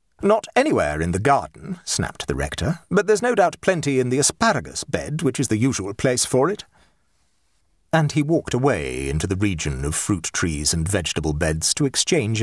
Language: English